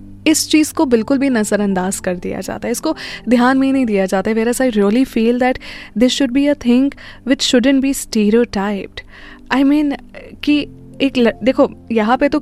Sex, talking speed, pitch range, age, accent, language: female, 185 wpm, 205-255 Hz, 20-39, native, Hindi